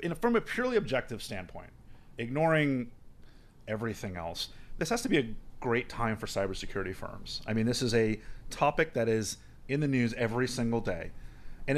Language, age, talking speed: English, 30-49, 180 wpm